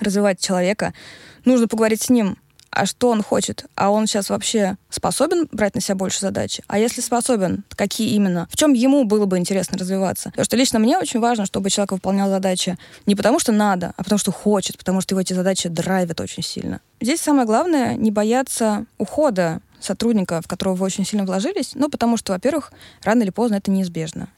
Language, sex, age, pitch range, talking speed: Russian, female, 20-39, 190-235 Hz, 195 wpm